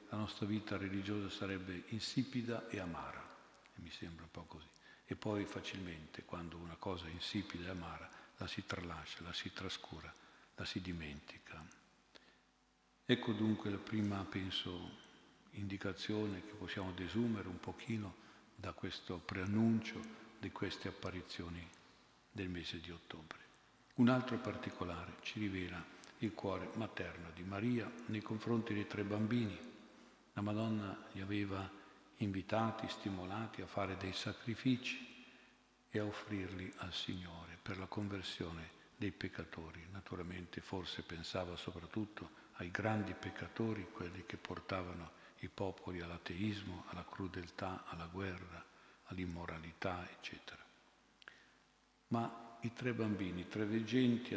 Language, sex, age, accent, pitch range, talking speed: Italian, male, 50-69, native, 90-110 Hz, 125 wpm